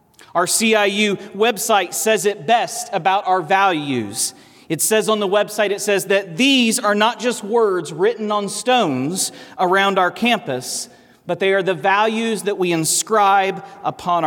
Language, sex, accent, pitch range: English, male, American, 175-210 Hz